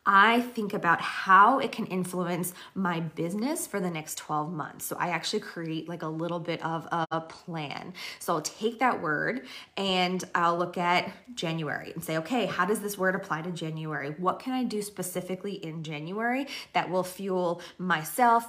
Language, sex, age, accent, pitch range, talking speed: English, female, 20-39, American, 165-200 Hz, 180 wpm